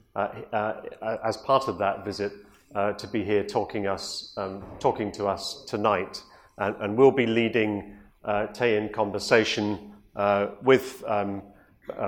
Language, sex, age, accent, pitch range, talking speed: English, male, 40-59, British, 110-130 Hz, 155 wpm